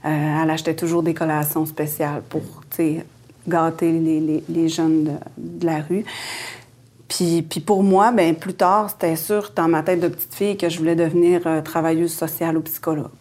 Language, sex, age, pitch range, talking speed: French, female, 30-49, 160-175 Hz, 190 wpm